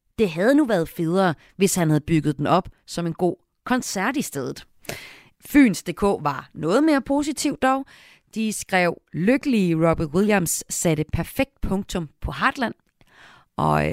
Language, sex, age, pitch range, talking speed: Danish, female, 30-49, 155-205 Hz, 145 wpm